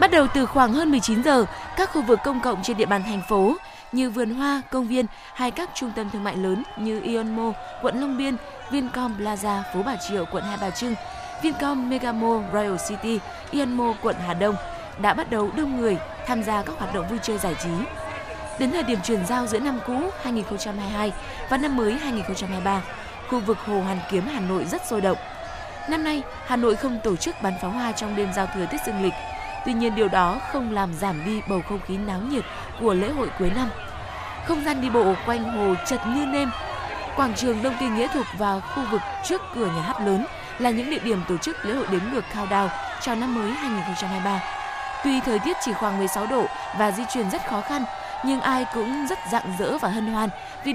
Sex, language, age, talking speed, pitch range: female, Vietnamese, 20-39, 220 wpm, 200-260 Hz